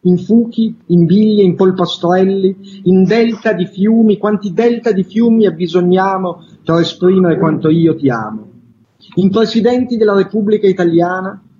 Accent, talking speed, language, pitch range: native, 135 wpm, Italian, 155-195 Hz